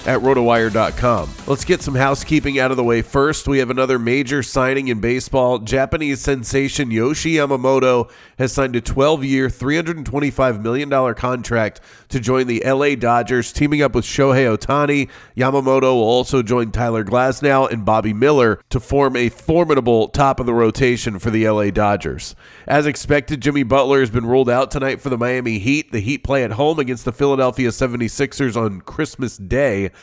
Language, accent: English, American